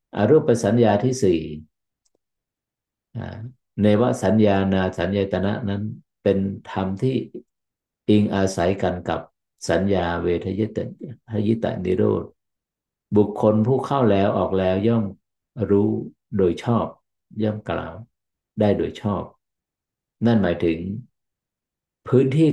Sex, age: male, 50-69